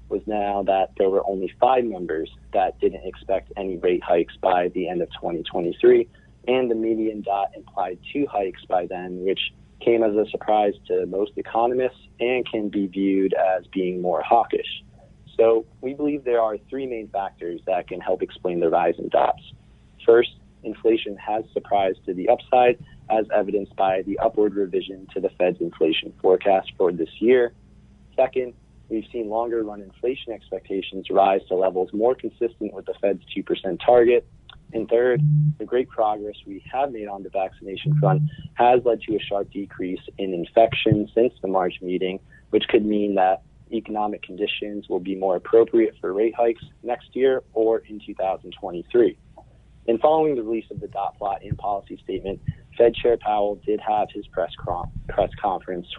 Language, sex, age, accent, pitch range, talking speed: English, male, 30-49, American, 100-125 Hz, 175 wpm